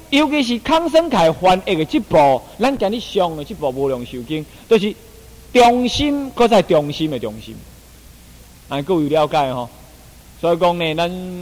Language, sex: Chinese, male